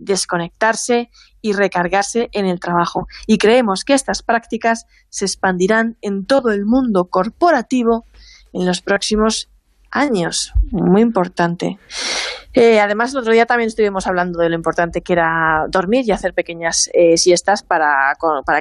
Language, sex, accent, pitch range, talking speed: Spanish, female, Spanish, 175-230 Hz, 145 wpm